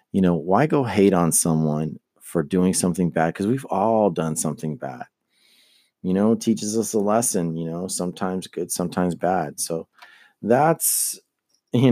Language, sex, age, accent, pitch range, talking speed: English, male, 40-59, American, 85-110 Hz, 165 wpm